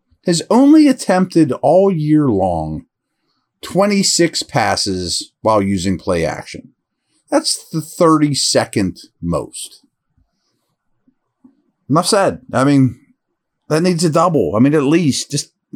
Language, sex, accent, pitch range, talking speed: English, male, American, 125-175 Hz, 110 wpm